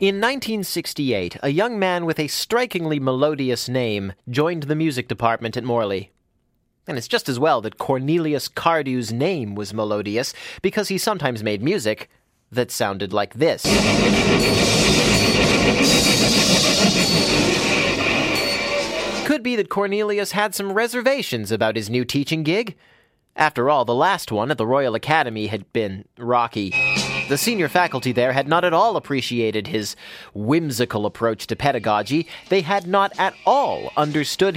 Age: 30-49